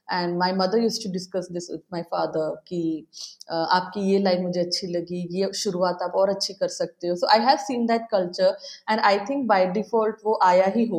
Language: Hindi